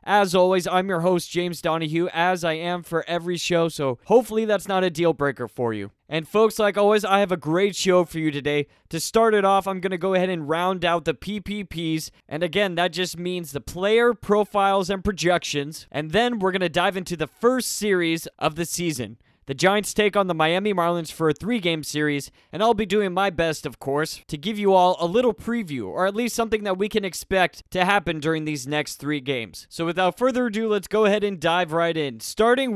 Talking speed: 225 wpm